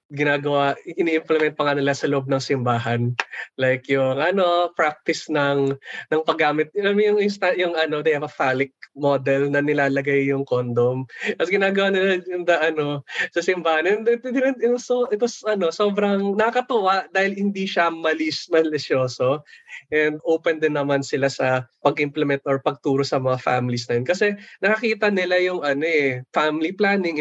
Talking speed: 165 wpm